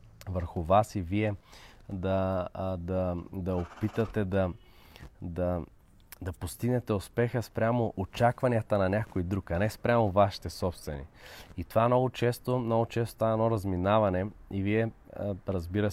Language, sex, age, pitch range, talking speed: Bulgarian, male, 20-39, 90-105 Hz, 130 wpm